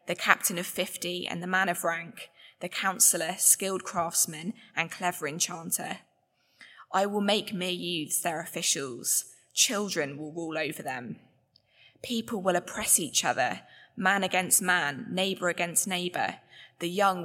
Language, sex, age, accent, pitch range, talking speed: English, female, 20-39, British, 170-195 Hz, 145 wpm